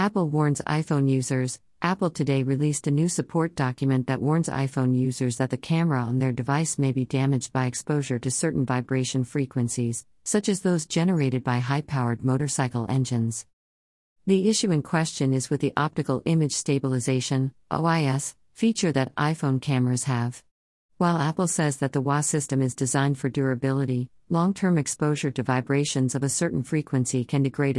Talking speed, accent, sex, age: 160 wpm, American, female, 50-69